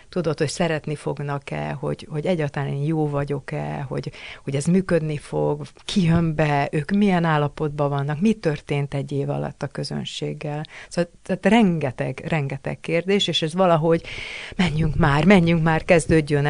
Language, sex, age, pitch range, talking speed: Hungarian, female, 30-49, 140-165 Hz, 155 wpm